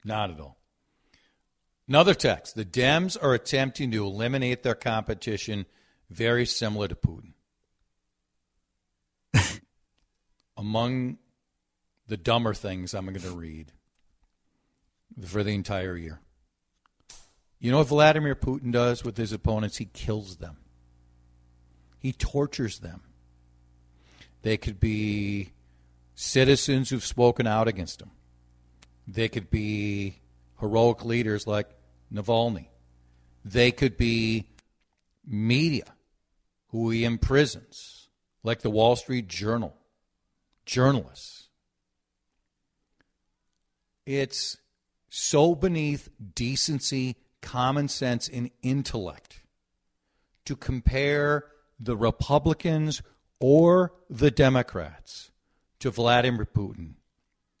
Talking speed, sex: 95 wpm, male